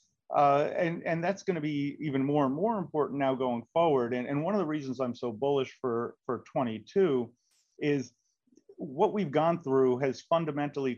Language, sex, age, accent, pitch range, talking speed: English, male, 40-59, American, 125-155 Hz, 185 wpm